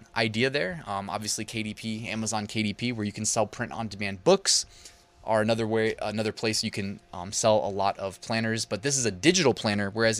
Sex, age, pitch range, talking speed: male, 20-39, 105-120 Hz, 195 wpm